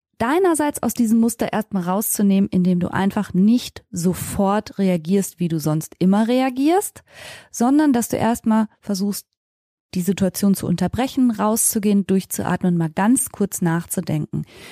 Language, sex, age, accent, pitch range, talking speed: German, female, 20-39, German, 195-235 Hz, 135 wpm